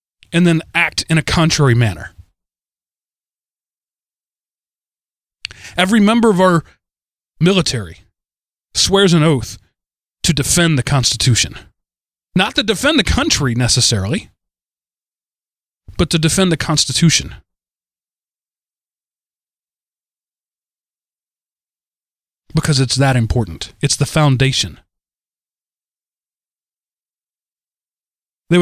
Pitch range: 105-150 Hz